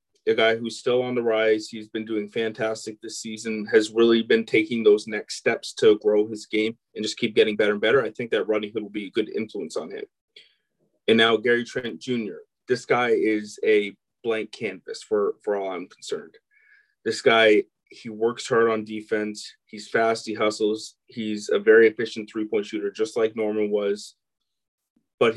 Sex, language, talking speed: male, English, 190 wpm